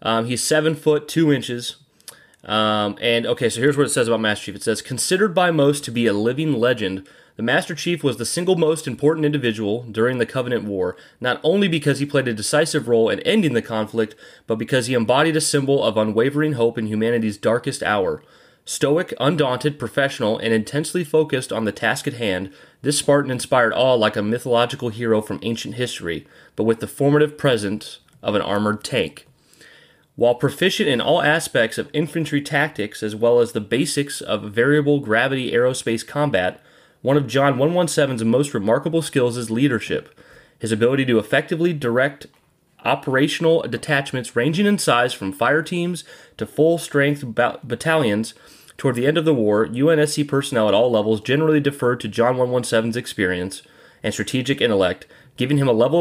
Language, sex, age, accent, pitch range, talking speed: English, male, 30-49, American, 115-150 Hz, 175 wpm